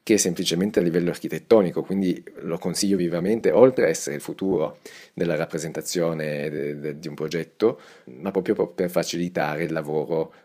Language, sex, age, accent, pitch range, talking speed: Italian, male, 30-49, native, 85-105 Hz, 145 wpm